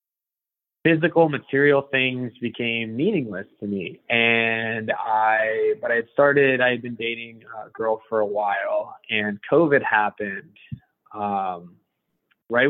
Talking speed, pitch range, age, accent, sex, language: 130 wpm, 105-125 Hz, 20-39, American, male, English